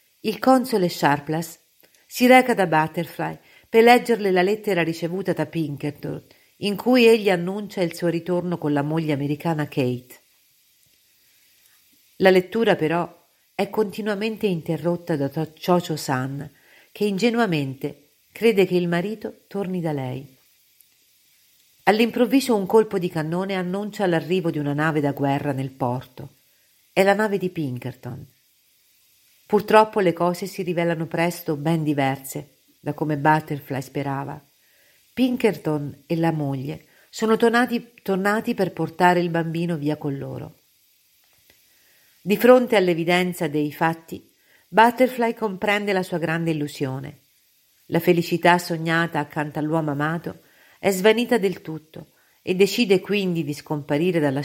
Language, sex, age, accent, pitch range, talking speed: Italian, female, 50-69, native, 150-195 Hz, 130 wpm